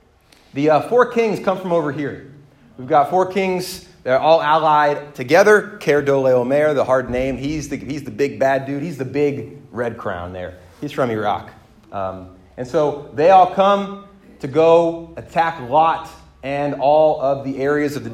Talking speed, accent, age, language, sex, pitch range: 180 wpm, American, 30-49, English, male, 135-180 Hz